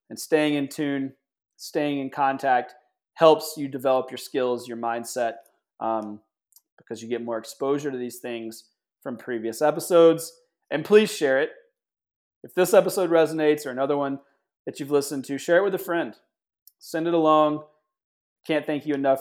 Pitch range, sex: 130-165 Hz, male